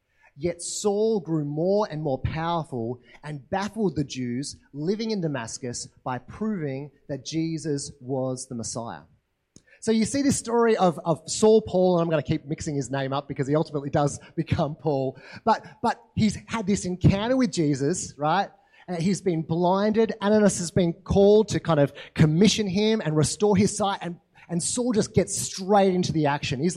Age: 30-49